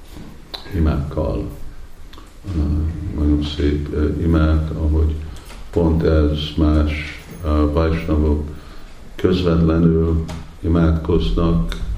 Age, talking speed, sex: 50-69, 70 wpm, male